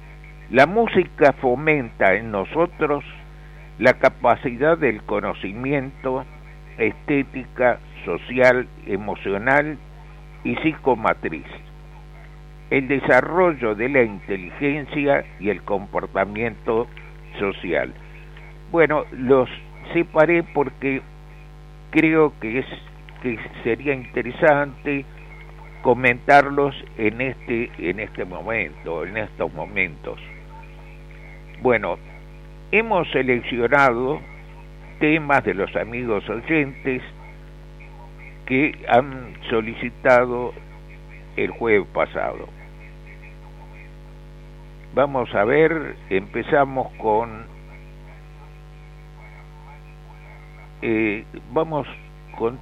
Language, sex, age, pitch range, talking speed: Spanish, male, 60-79, 130-150 Hz, 75 wpm